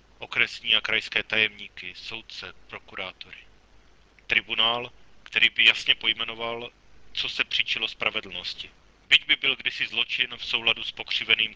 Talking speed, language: 125 wpm, Czech